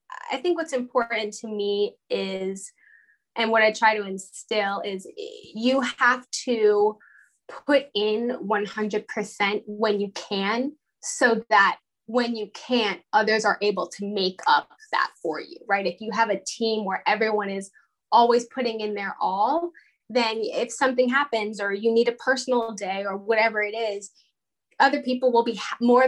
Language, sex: English, female